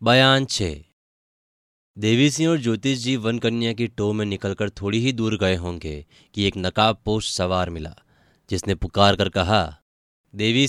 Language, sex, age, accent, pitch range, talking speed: Hindi, male, 20-39, native, 95-115 Hz, 155 wpm